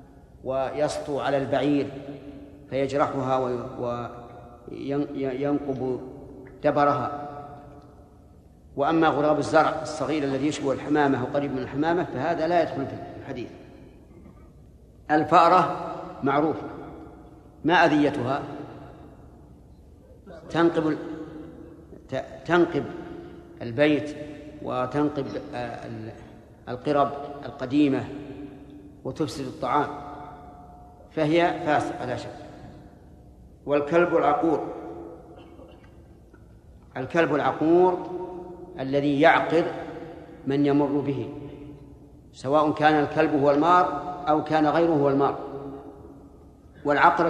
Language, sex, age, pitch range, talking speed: Arabic, male, 50-69, 135-150 Hz, 70 wpm